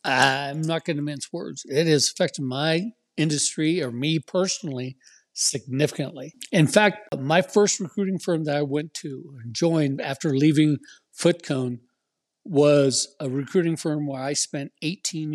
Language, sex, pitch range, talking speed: English, male, 145-170 Hz, 150 wpm